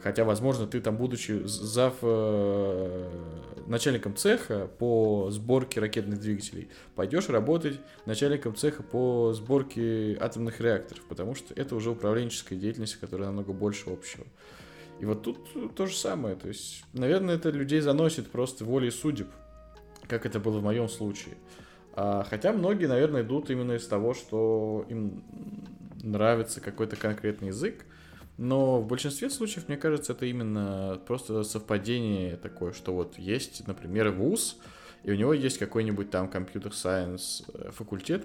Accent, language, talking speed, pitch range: native, Russian, 135 wpm, 100-125 Hz